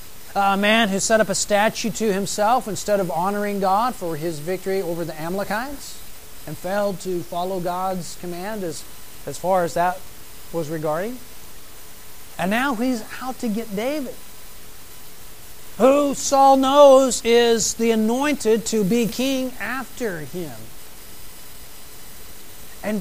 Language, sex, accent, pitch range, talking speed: English, male, American, 185-250 Hz, 135 wpm